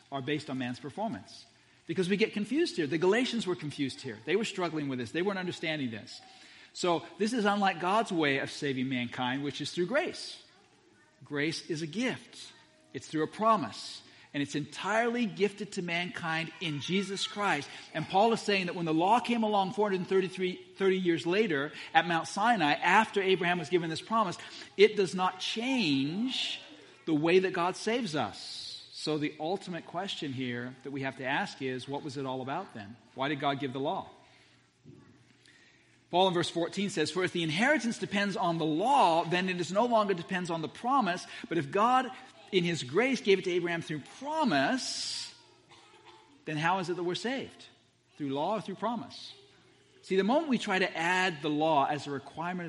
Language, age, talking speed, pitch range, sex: English, 40-59, 190 wpm, 140-195 Hz, male